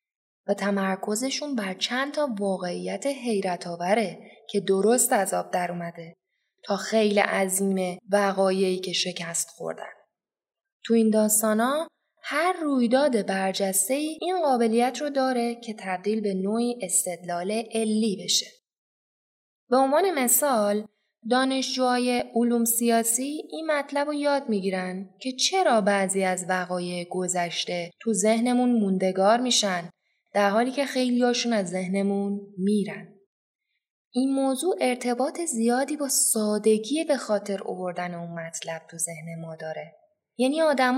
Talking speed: 120 wpm